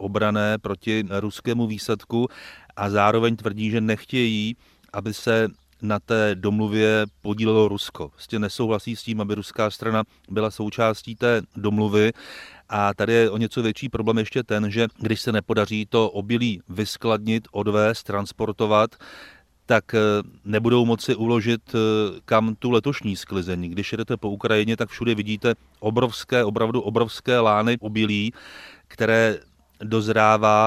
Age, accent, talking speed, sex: 30-49, native, 135 wpm, male